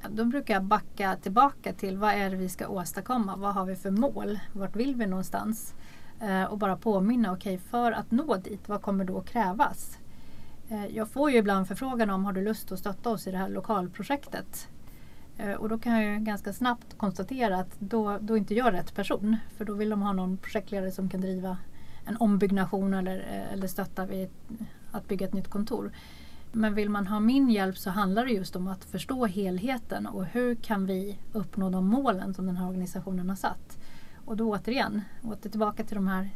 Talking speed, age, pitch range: 205 wpm, 30-49, 190-225 Hz